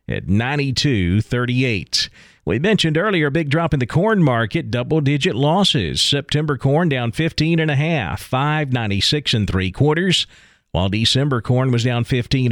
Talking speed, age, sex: 160 wpm, 40-59, male